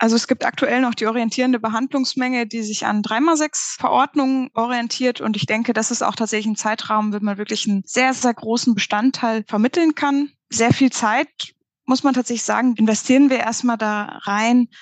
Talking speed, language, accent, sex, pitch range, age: 180 wpm, German, German, female, 205-245 Hz, 20-39